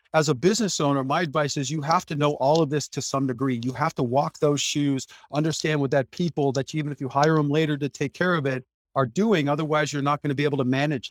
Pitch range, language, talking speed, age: 130-155 Hz, English, 275 wpm, 40-59